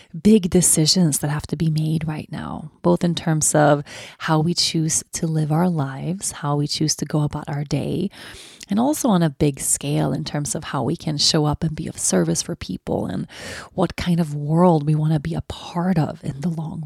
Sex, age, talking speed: female, 30-49, 225 wpm